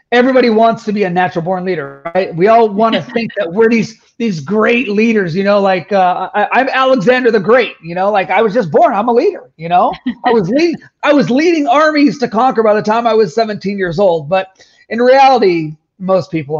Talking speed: 225 wpm